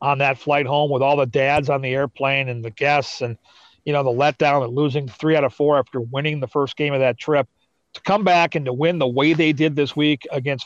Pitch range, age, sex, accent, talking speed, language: 140-170 Hz, 40-59, male, American, 260 wpm, English